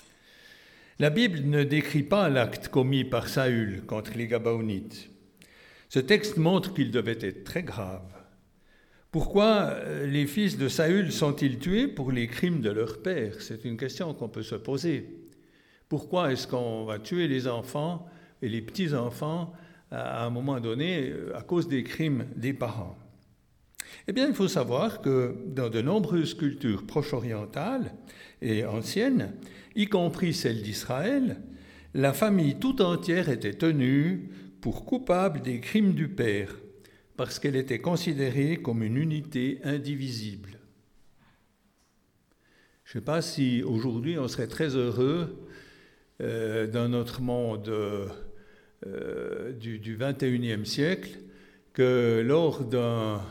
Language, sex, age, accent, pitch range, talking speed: French, male, 60-79, French, 115-165 Hz, 135 wpm